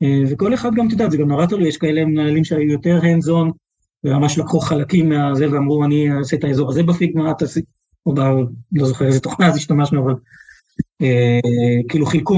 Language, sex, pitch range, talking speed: Hebrew, male, 135-165 Hz, 190 wpm